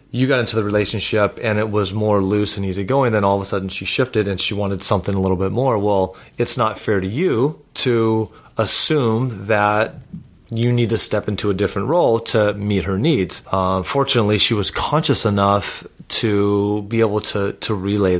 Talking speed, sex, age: 200 wpm, male, 30-49